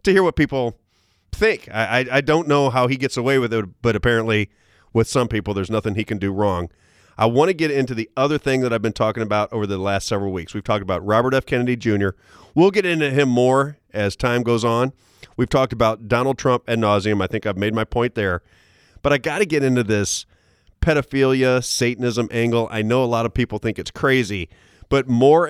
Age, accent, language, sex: 40-59, American, English, male